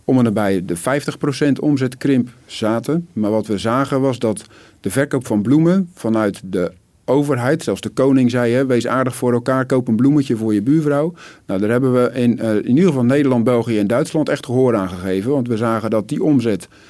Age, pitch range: 50-69, 110-135 Hz